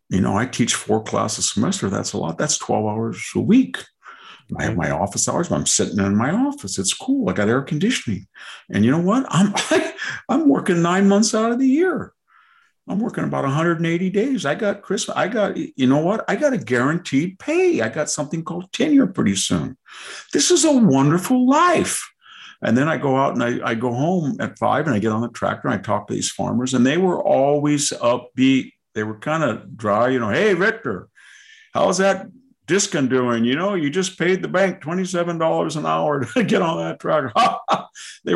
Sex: male